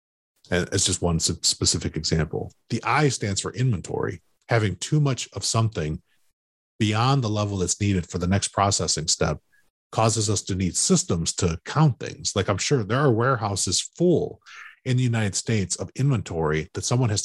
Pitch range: 90-120 Hz